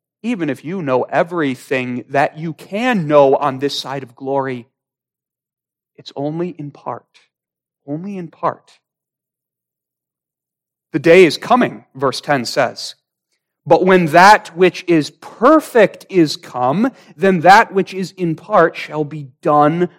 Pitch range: 145-195 Hz